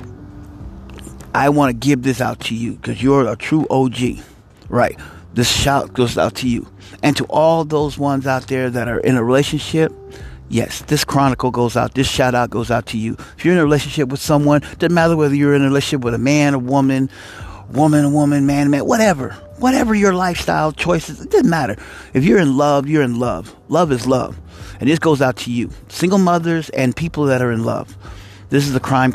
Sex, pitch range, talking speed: male, 115-150 Hz, 215 wpm